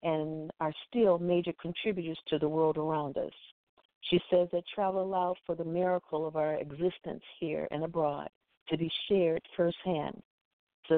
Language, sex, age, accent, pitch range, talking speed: English, female, 50-69, American, 160-190 Hz, 160 wpm